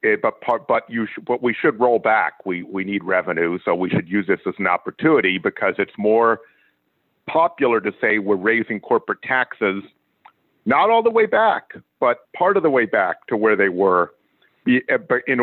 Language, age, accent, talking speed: English, 50-69, American, 190 wpm